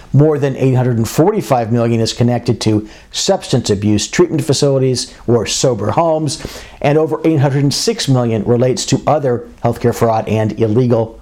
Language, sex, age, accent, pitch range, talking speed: English, male, 50-69, American, 110-140 Hz, 135 wpm